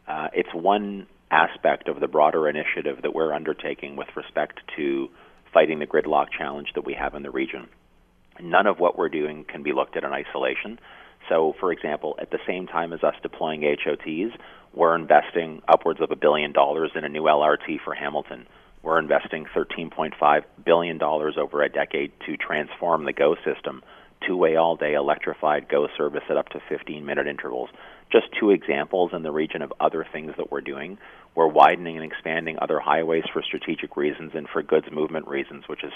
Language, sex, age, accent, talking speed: English, male, 40-59, American, 180 wpm